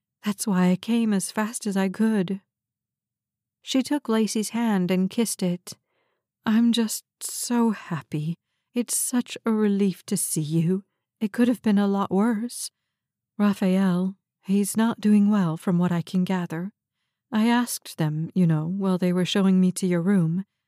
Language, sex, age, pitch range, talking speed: English, female, 40-59, 180-225 Hz, 165 wpm